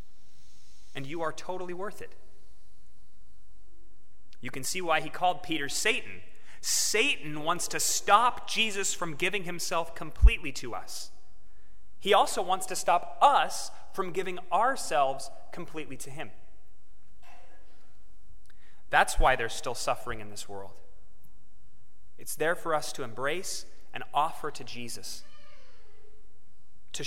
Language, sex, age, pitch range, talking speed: English, male, 30-49, 105-175 Hz, 125 wpm